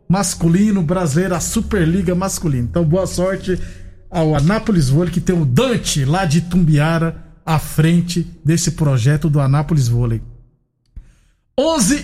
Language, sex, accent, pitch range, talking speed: Portuguese, male, Brazilian, 165-205 Hz, 130 wpm